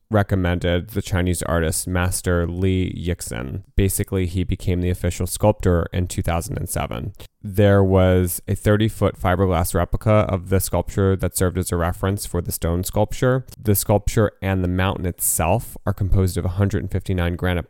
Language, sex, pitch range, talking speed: English, male, 90-105 Hz, 150 wpm